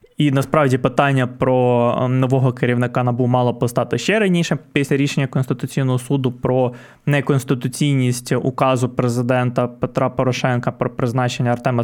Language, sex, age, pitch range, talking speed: Ukrainian, male, 20-39, 125-160 Hz, 120 wpm